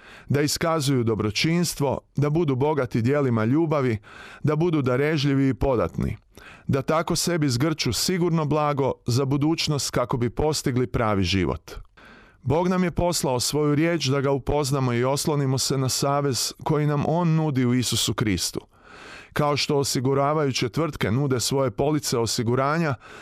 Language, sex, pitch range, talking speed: Croatian, male, 125-155 Hz, 140 wpm